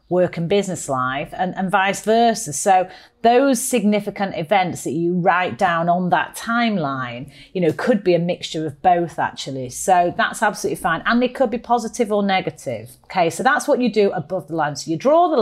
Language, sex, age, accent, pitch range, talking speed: English, female, 40-59, British, 165-210 Hz, 200 wpm